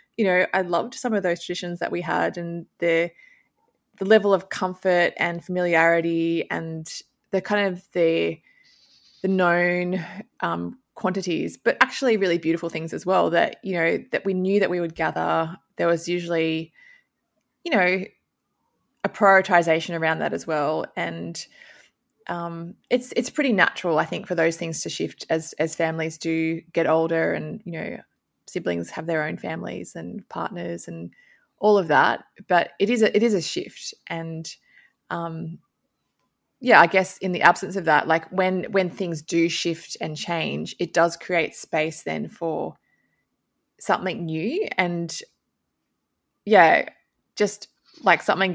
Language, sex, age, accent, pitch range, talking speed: English, female, 20-39, Australian, 165-190 Hz, 160 wpm